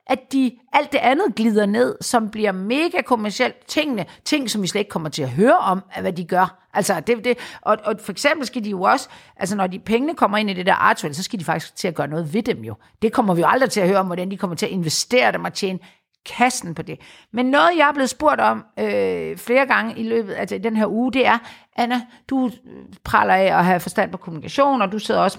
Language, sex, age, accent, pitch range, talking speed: Danish, female, 50-69, native, 185-245 Hz, 260 wpm